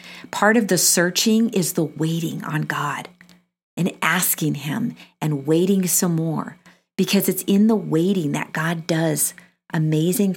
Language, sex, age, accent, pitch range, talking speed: English, female, 50-69, American, 155-190 Hz, 145 wpm